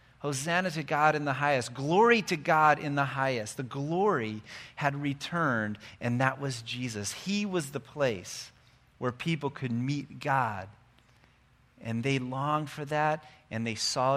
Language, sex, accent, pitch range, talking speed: English, male, American, 120-170 Hz, 155 wpm